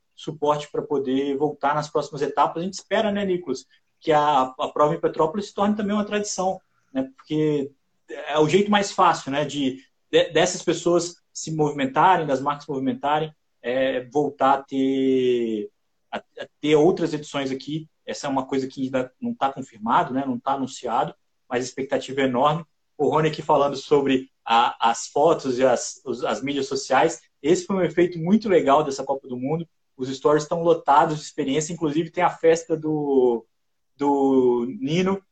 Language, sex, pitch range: Portuguese, male, 135-165 Hz